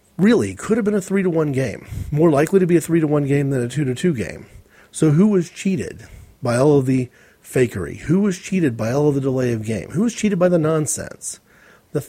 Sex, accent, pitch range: male, American, 125-165 Hz